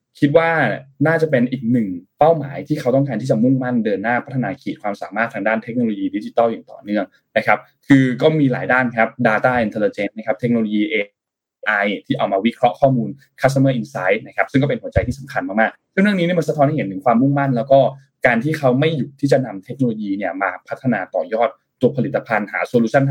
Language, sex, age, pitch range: Thai, male, 20-39, 115-155 Hz